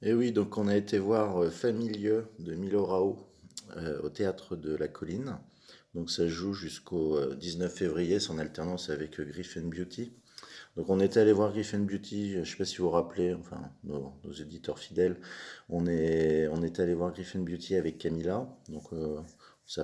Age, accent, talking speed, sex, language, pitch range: 30-49, French, 180 wpm, male, French, 75-90 Hz